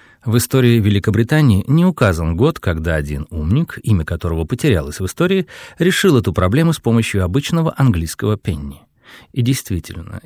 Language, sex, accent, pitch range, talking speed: Russian, male, native, 95-140 Hz, 140 wpm